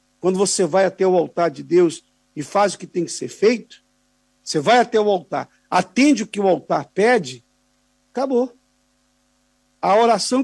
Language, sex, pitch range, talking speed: Portuguese, male, 175-245 Hz, 170 wpm